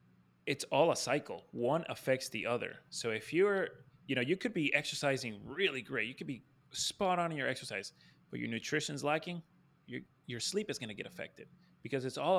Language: English